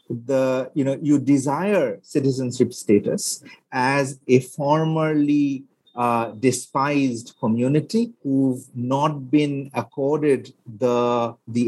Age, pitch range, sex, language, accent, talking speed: 50-69, 130-170 Hz, male, English, Indian, 100 wpm